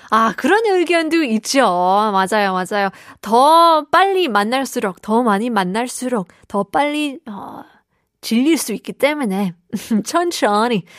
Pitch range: 210-295 Hz